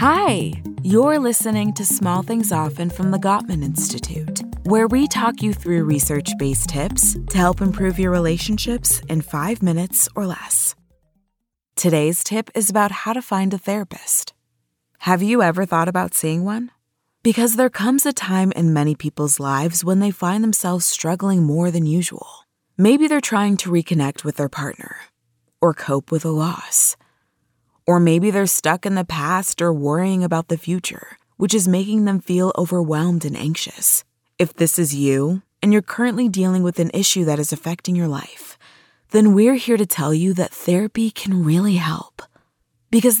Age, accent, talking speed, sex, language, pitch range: 20-39, American, 170 wpm, female, English, 160-205 Hz